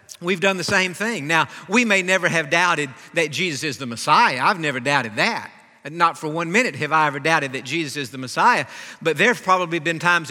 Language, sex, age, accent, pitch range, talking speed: English, male, 50-69, American, 165-220 Hz, 220 wpm